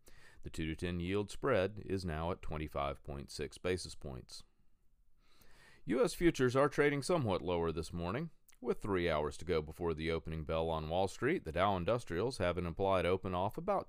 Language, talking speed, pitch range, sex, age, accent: English, 170 wpm, 80-130 Hz, male, 40-59, American